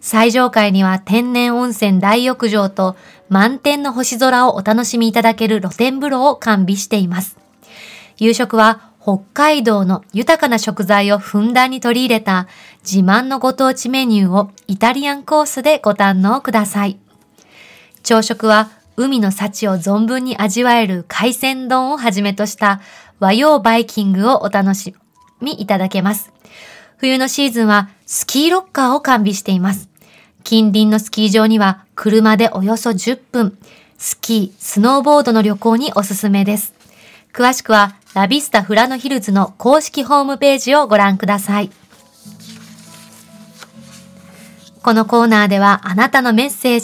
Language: Japanese